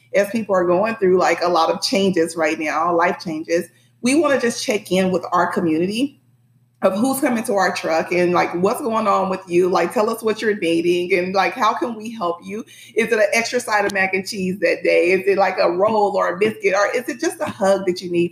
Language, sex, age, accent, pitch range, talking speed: English, female, 30-49, American, 175-220 Hz, 250 wpm